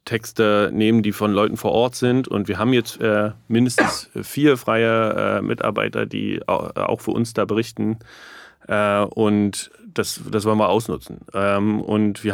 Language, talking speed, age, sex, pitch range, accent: German, 165 wpm, 30-49, male, 105-125 Hz, German